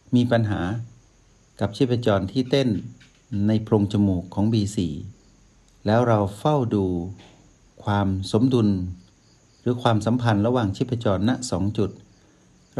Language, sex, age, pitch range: Thai, male, 60-79, 100-125 Hz